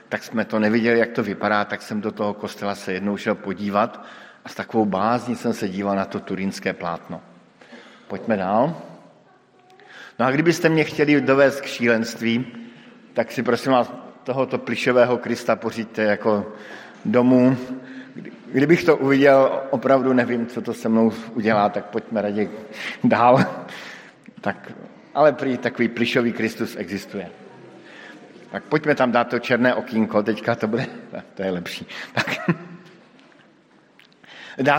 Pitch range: 115-145 Hz